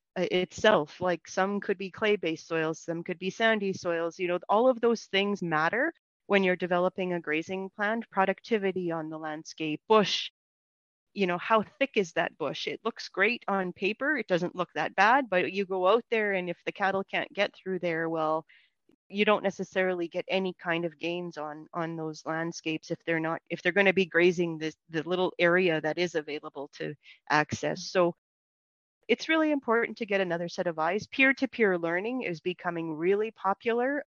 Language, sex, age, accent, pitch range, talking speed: English, female, 30-49, American, 165-200 Hz, 190 wpm